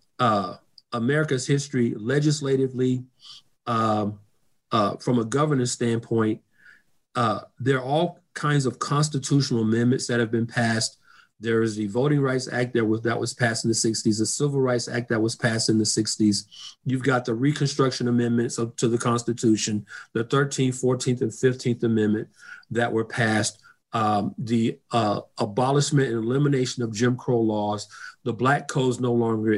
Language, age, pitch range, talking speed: English, 40-59, 115-140 Hz, 155 wpm